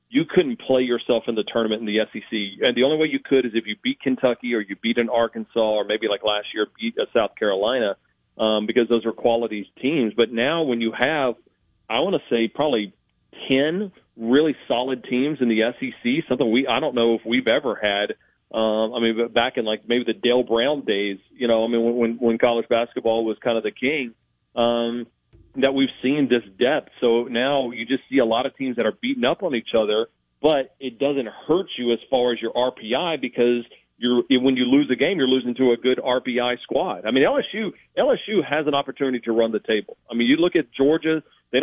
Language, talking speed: English, 225 wpm